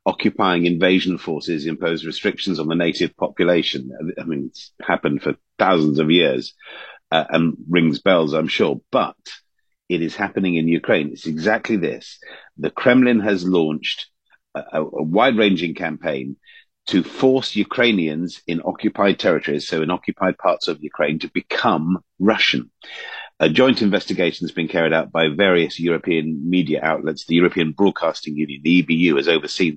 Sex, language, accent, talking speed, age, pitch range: male, English, British, 150 wpm, 50-69, 80-100 Hz